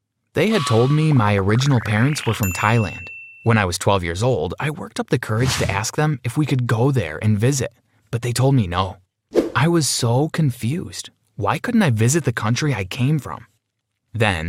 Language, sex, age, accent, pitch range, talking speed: English, male, 20-39, American, 105-135 Hz, 205 wpm